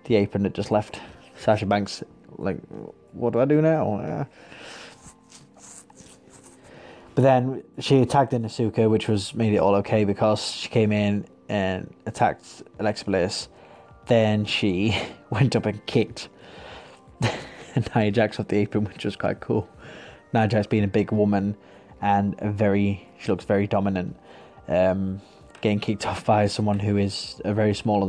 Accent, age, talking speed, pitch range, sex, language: British, 20-39, 150 wpm, 100-110 Hz, male, English